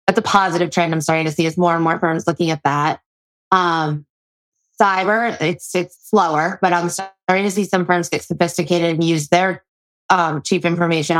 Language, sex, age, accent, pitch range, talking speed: English, female, 20-39, American, 155-175 Hz, 195 wpm